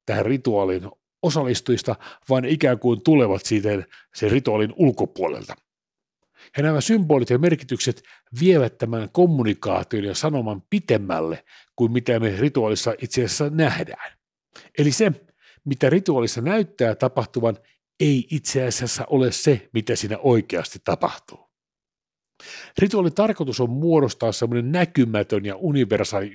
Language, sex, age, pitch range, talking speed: Finnish, male, 50-69, 110-150 Hz, 115 wpm